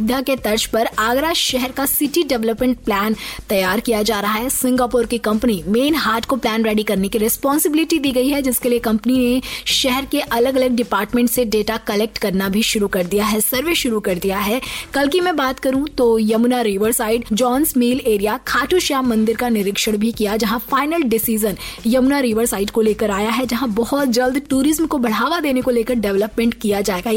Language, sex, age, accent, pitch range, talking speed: Hindi, female, 20-39, native, 215-265 Hz, 205 wpm